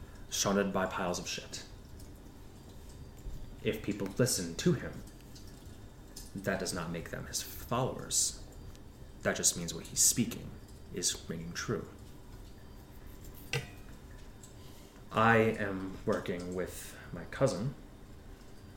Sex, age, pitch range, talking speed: male, 30-49, 90-105 Hz, 100 wpm